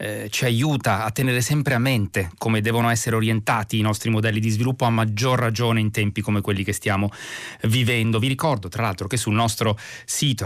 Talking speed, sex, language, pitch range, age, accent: 195 wpm, male, Italian, 105-120 Hz, 30-49, native